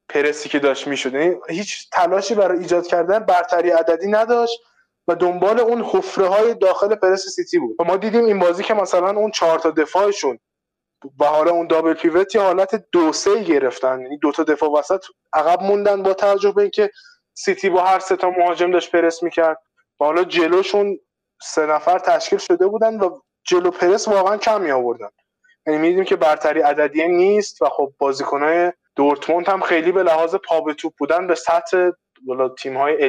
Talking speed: 180 wpm